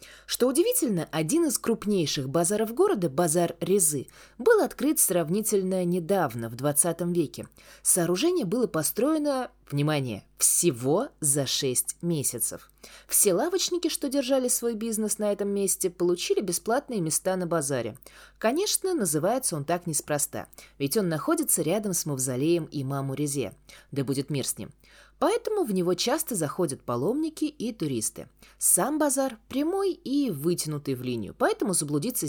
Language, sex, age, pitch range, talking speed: Russian, female, 20-39, 145-225 Hz, 135 wpm